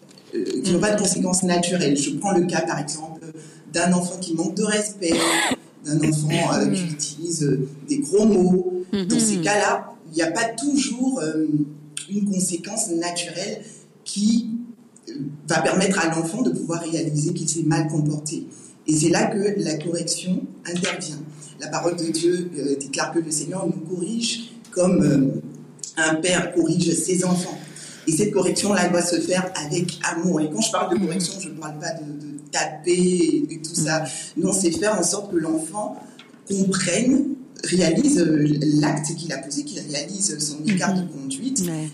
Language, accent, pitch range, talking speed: French, French, 155-200 Hz, 170 wpm